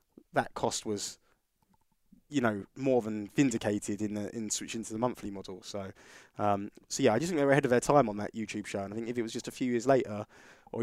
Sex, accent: male, British